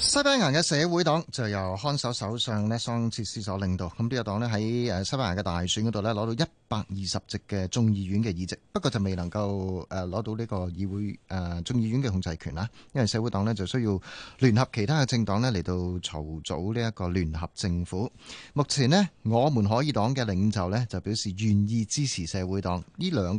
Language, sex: Chinese, male